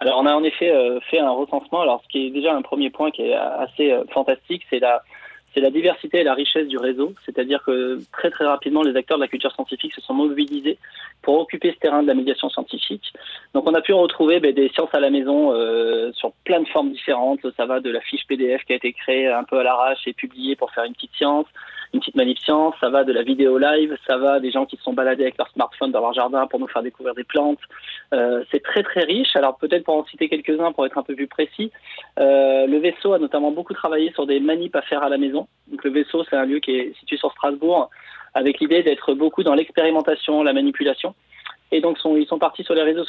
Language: French